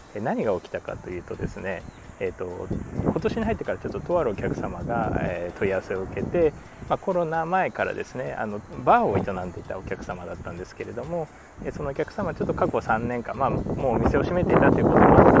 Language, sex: Japanese, male